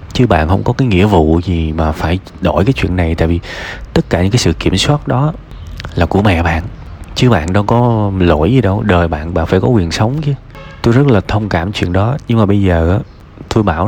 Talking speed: 245 wpm